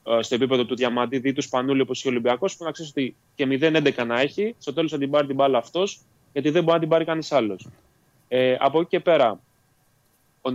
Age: 20-39